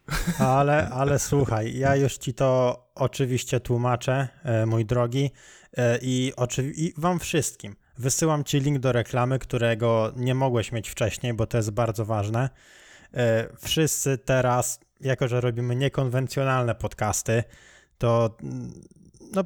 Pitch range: 120-145 Hz